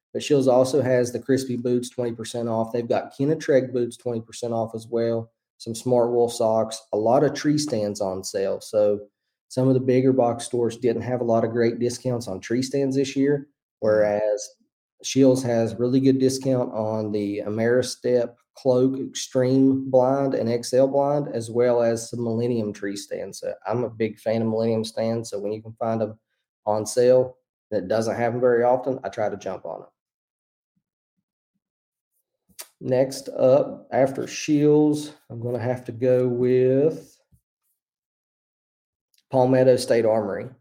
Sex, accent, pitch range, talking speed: male, American, 115-130 Hz, 160 wpm